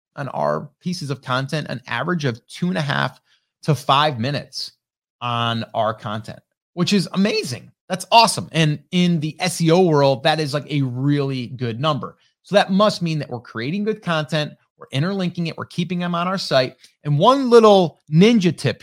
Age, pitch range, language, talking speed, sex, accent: 30-49, 135-170 Hz, English, 185 wpm, male, American